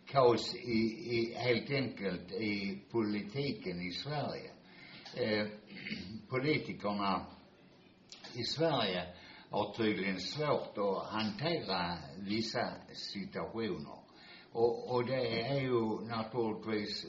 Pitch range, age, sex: 90-115 Hz, 60-79, male